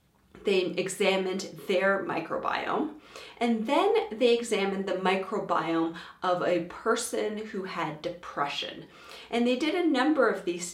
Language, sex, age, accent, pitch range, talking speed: English, female, 30-49, American, 175-235 Hz, 130 wpm